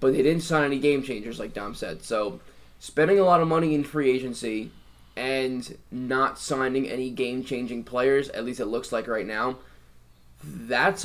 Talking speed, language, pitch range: 175 wpm, English, 105-135 Hz